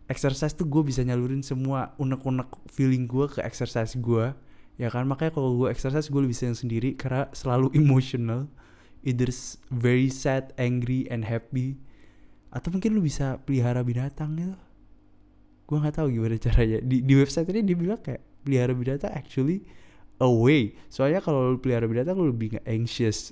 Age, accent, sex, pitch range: 20-39, native, male, 110-135 Hz